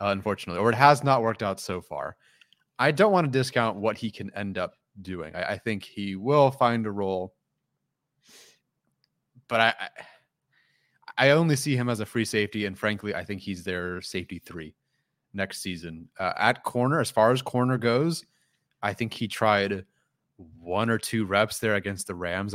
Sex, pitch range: male, 95-115 Hz